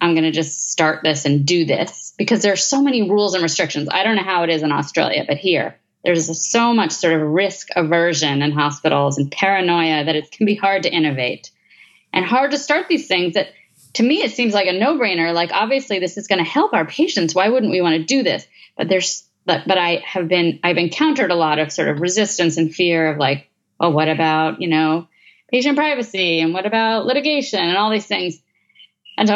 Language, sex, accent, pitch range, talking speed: English, female, American, 165-220 Hz, 225 wpm